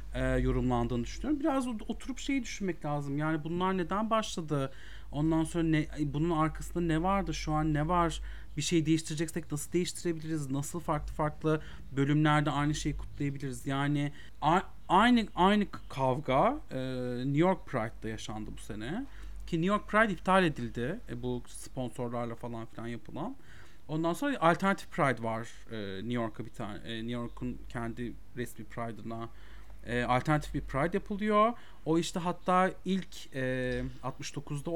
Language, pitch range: Turkish, 120-170 Hz